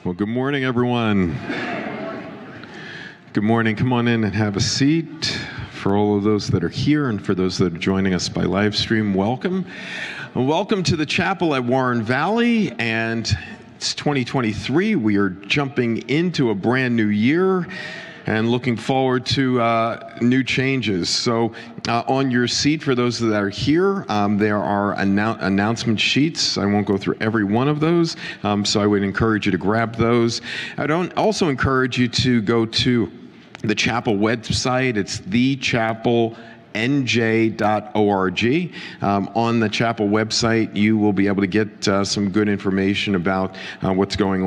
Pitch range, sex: 105-130 Hz, male